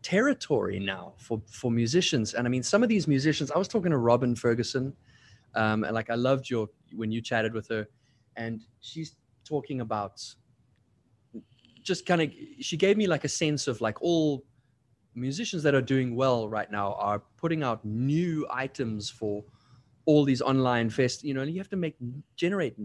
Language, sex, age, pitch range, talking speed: English, male, 20-39, 110-150 Hz, 180 wpm